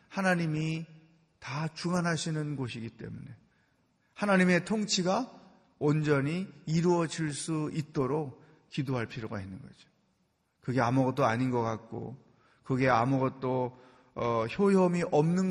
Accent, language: native, Korean